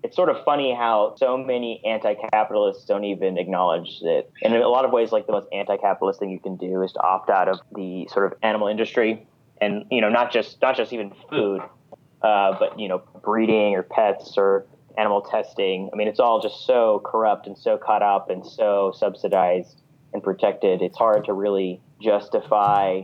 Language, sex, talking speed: English, male, 200 wpm